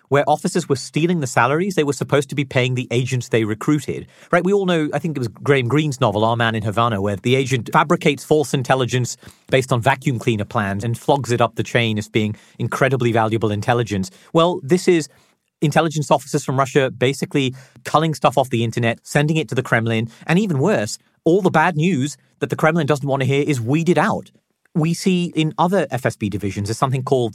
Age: 40-59